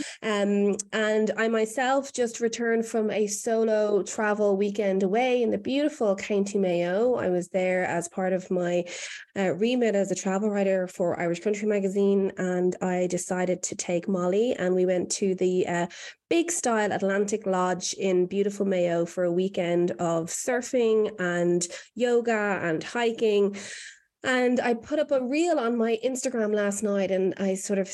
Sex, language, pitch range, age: female, English, 180-210 Hz, 20-39